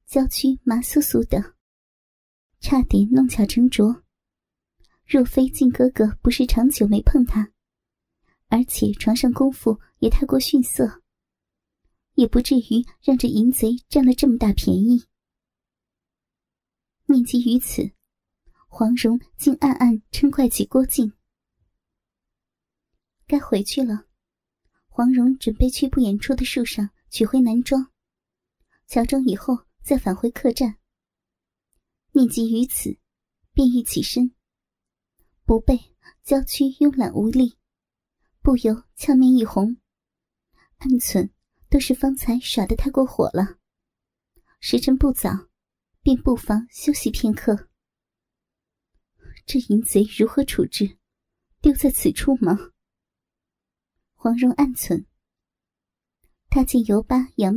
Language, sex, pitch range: Chinese, male, 225-270 Hz